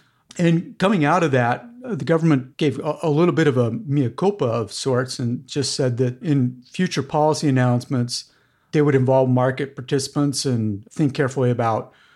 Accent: American